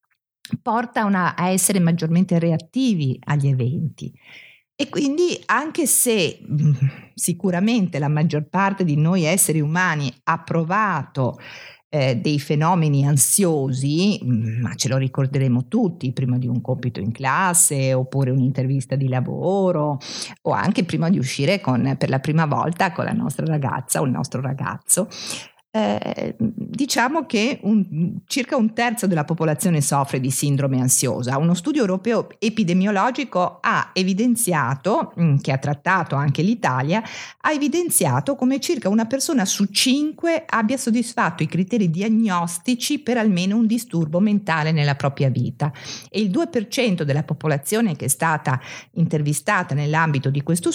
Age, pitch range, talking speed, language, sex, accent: 50-69, 140-215 Hz, 135 wpm, Italian, female, native